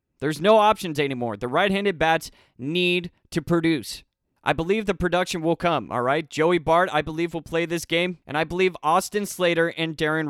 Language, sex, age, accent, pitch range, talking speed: English, male, 20-39, American, 150-185 Hz, 190 wpm